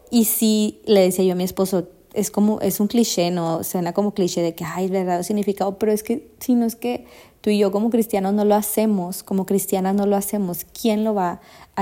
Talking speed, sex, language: 245 wpm, female, Spanish